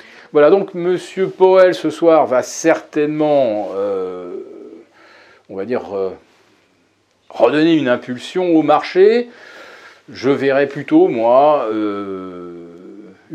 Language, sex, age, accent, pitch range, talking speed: French, male, 40-59, French, 110-175 Hz, 105 wpm